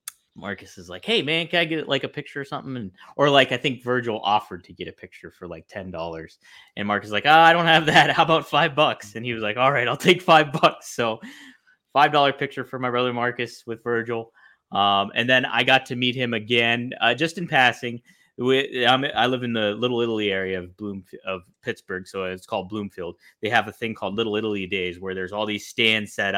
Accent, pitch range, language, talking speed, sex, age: American, 105-145 Hz, English, 230 wpm, male, 20-39